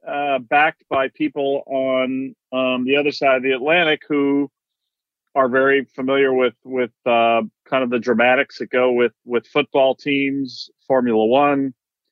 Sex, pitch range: male, 120-140 Hz